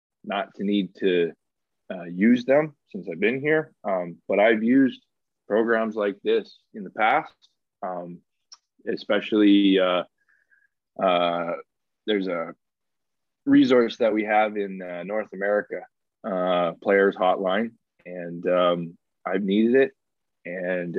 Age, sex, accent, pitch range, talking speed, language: 20-39, male, American, 90-120 Hz, 125 wpm, English